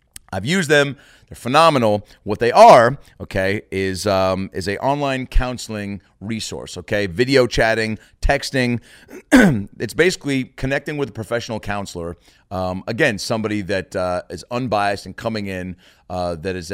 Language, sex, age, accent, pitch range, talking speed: English, male, 30-49, American, 100-130 Hz, 145 wpm